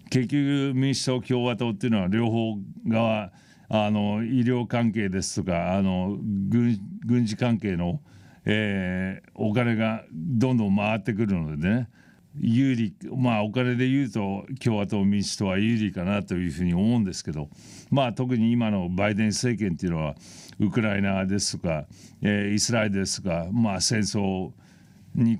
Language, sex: Japanese, male